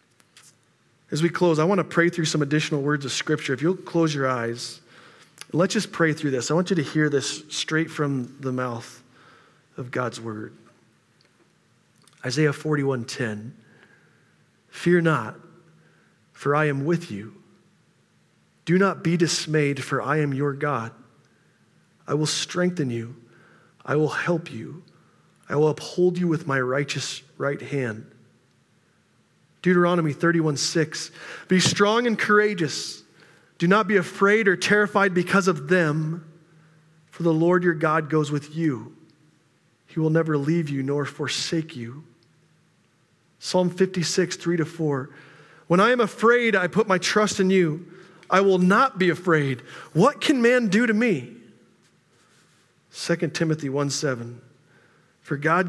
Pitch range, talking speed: 145-180 Hz, 145 wpm